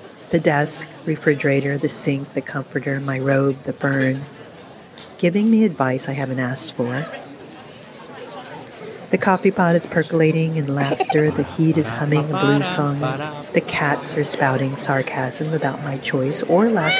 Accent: American